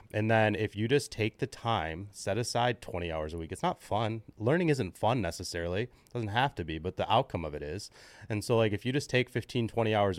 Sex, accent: male, American